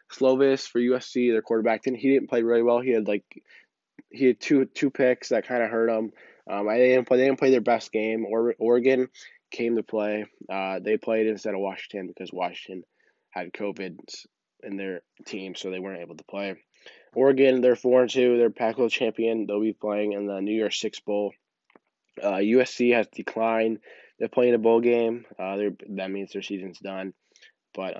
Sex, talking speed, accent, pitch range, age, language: male, 195 wpm, American, 100-120 Hz, 20-39, English